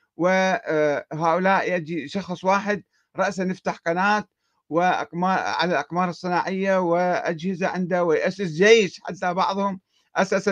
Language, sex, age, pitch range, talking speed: Arabic, male, 50-69, 160-200 Hz, 95 wpm